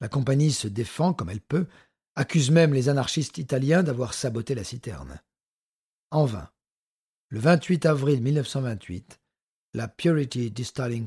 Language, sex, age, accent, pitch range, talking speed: French, male, 50-69, French, 120-150 Hz, 135 wpm